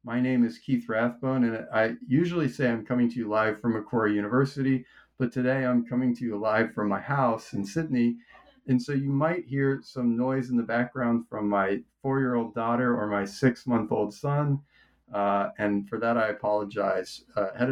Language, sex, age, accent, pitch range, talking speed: English, male, 40-59, American, 110-130 Hz, 185 wpm